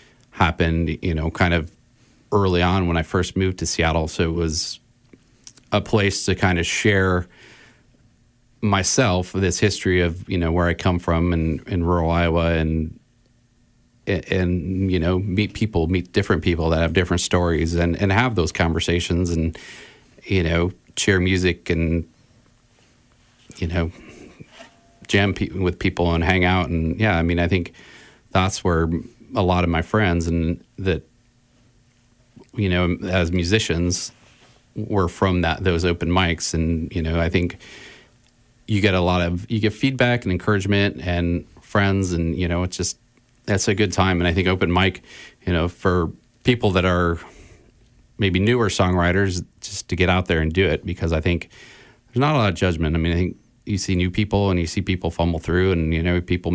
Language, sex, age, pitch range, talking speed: English, male, 40-59, 85-105 Hz, 180 wpm